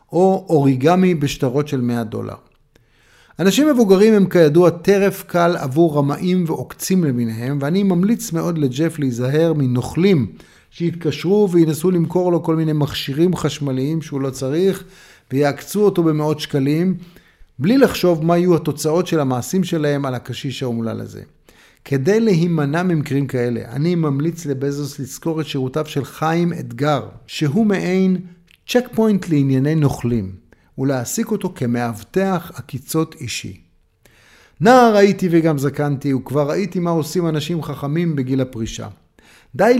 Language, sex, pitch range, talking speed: Hebrew, male, 130-175 Hz, 130 wpm